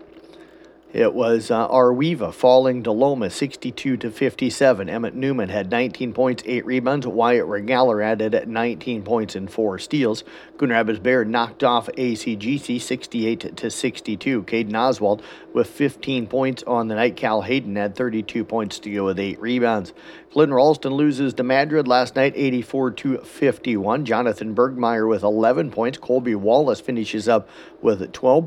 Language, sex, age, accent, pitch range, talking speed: English, male, 50-69, American, 110-135 Hz, 140 wpm